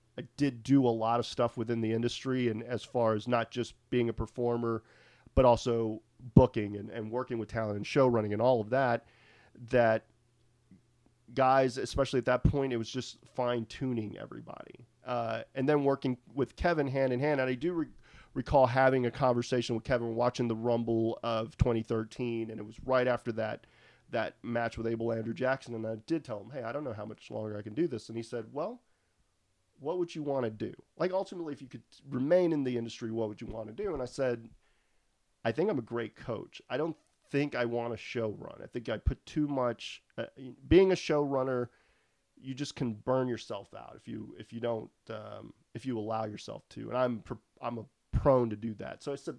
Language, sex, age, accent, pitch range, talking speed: English, male, 30-49, American, 115-135 Hz, 215 wpm